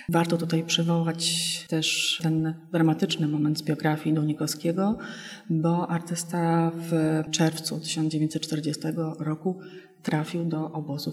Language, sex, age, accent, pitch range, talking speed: Polish, female, 30-49, native, 160-180 Hz, 105 wpm